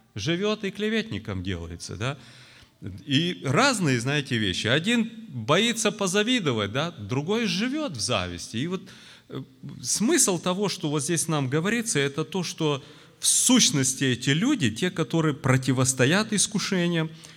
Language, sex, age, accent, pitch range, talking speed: Russian, male, 30-49, native, 110-155 Hz, 130 wpm